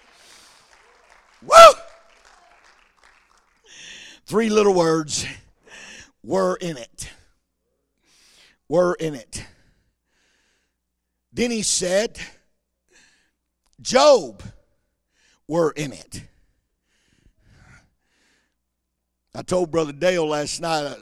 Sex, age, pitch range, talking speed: male, 50-69, 140-200 Hz, 65 wpm